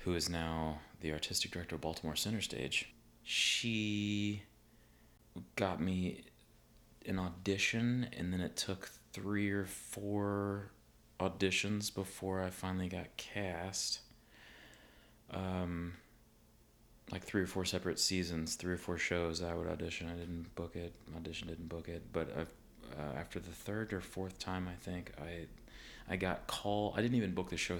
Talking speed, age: 155 wpm, 30-49